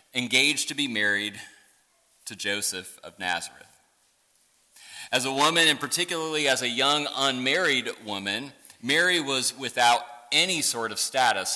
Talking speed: 130 wpm